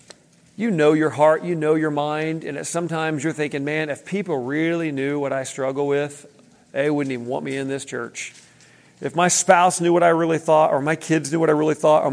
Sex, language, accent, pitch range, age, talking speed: male, English, American, 140-175 Hz, 40-59, 230 wpm